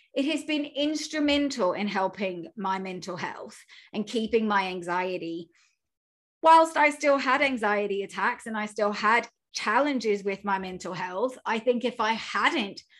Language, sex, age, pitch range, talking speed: English, female, 30-49, 195-250 Hz, 150 wpm